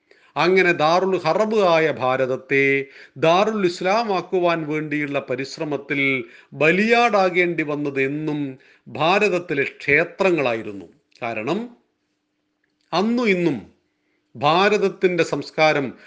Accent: native